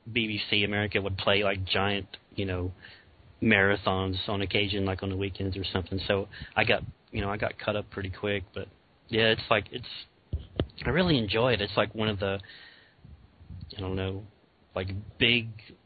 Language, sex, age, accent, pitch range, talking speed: English, male, 30-49, American, 95-105 Hz, 180 wpm